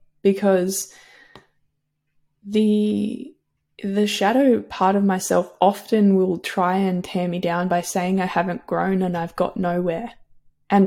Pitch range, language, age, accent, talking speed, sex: 185-210 Hz, English, 20-39, Australian, 135 wpm, female